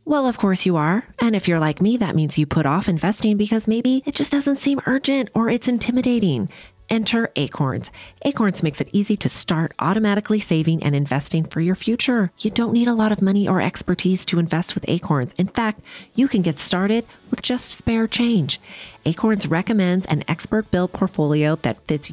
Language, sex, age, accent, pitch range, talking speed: English, female, 30-49, American, 145-215 Hz, 195 wpm